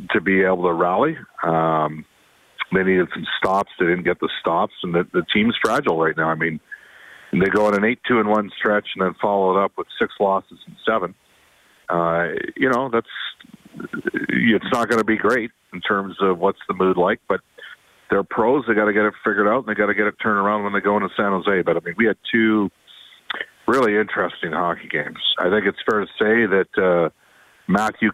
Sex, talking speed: male, 220 wpm